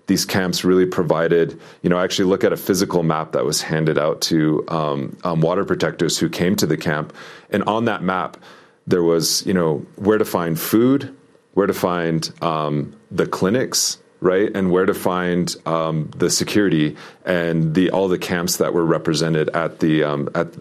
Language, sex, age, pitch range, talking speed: English, male, 30-49, 80-95 Hz, 190 wpm